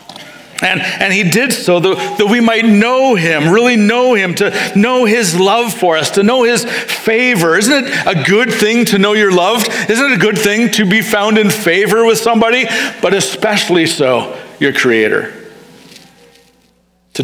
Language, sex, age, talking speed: English, male, 50-69, 175 wpm